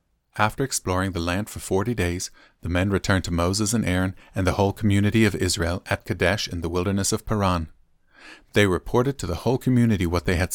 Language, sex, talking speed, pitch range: English, male, 205 wpm, 95-130 Hz